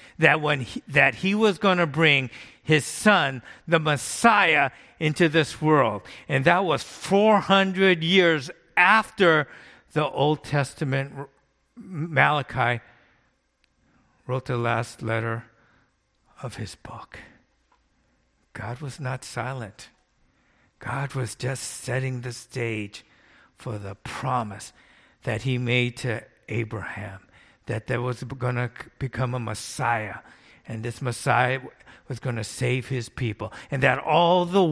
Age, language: 50-69, English